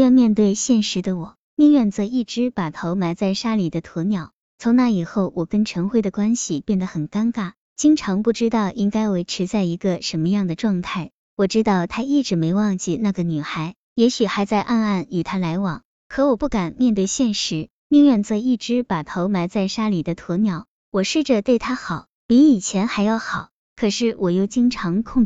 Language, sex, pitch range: Chinese, male, 185-240 Hz